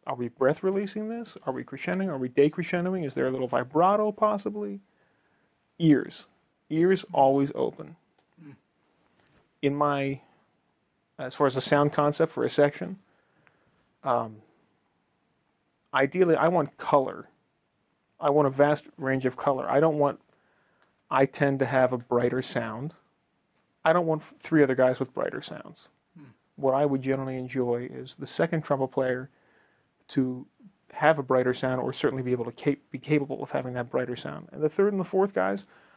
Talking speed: 160 wpm